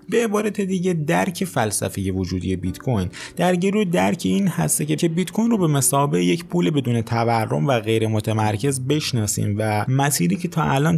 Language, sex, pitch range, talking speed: Persian, male, 100-145 Hz, 175 wpm